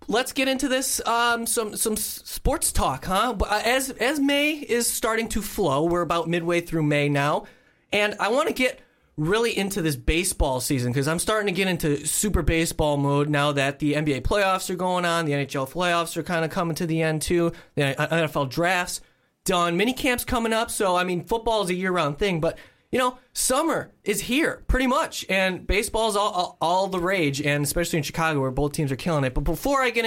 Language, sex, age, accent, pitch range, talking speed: English, male, 20-39, American, 150-220 Hz, 210 wpm